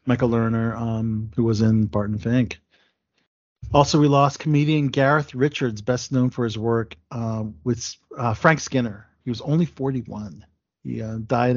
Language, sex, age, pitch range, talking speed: English, male, 40-59, 110-145 Hz, 160 wpm